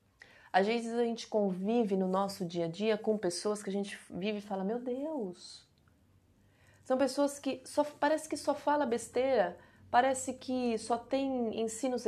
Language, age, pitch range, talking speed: Portuguese, 30-49, 190-245 Hz, 170 wpm